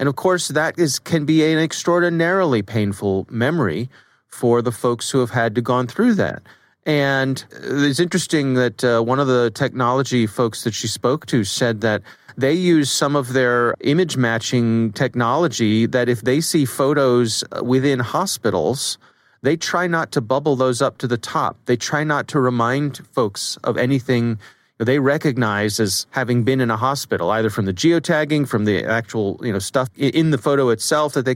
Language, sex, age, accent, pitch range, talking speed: English, male, 30-49, American, 120-160 Hz, 175 wpm